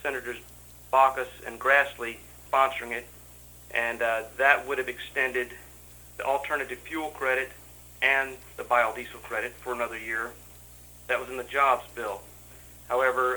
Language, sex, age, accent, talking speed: English, male, 40-59, American, 135 wpm